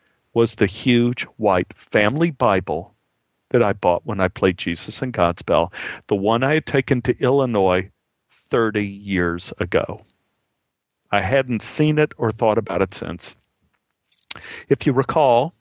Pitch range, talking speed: 100-130 Hz, 145 wpm